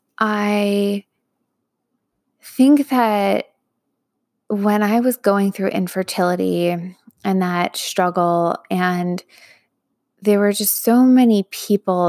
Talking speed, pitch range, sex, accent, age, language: 95 wpm, 175-205 Hz, female, American, 20-39, English